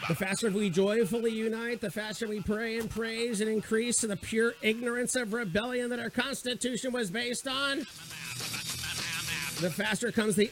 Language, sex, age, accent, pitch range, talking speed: English, male, 50-69, American, 210-255 Hz, 165 wpm